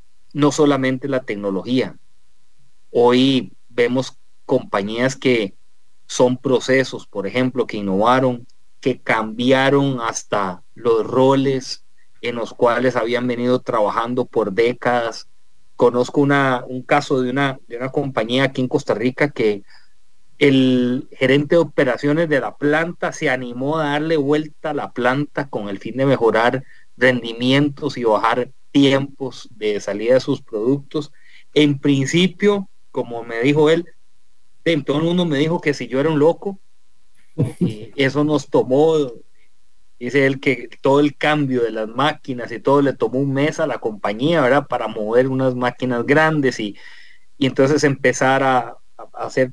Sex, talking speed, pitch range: male, 145 wpm, 120-145 Hz